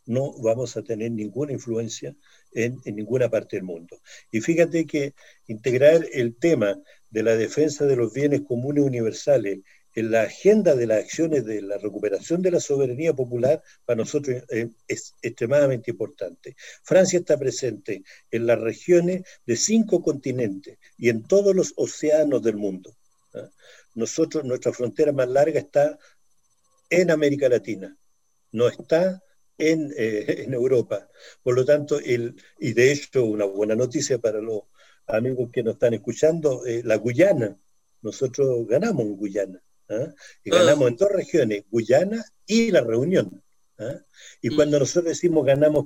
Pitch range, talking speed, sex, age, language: 115-170 Hz, 145 wpm, male, 50-69, Spanish